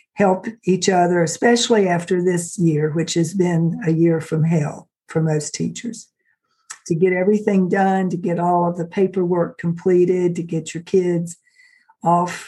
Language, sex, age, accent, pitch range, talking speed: English, female, 50-69, American, 165-210 Hz, 160 wpm